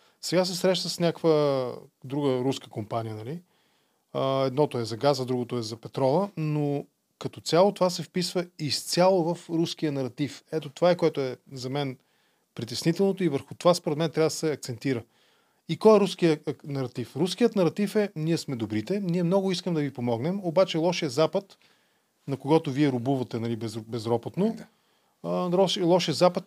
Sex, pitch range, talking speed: male, 135-180 Hz, 170 wpm